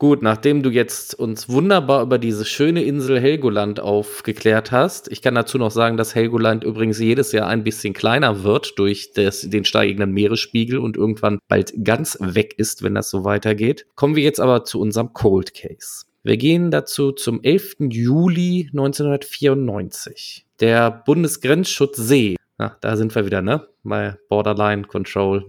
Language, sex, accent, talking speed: German, male, German, 155 wpm